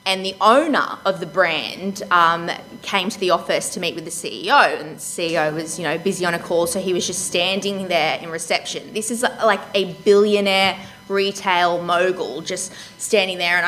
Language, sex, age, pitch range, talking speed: English, female, 20-39, 180-220 Hz, 195 wpm